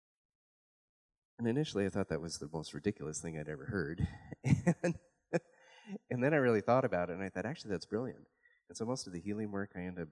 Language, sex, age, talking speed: English, male, 40-59, 220 wpm